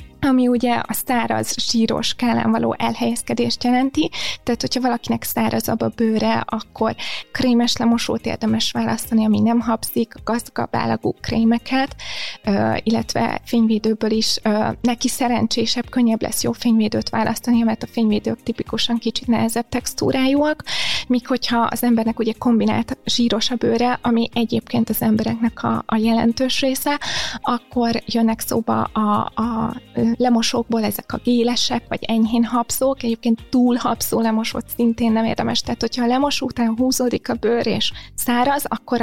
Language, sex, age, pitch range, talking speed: Hungarian, female, 20-39, 220-240 Hz, 140 wpm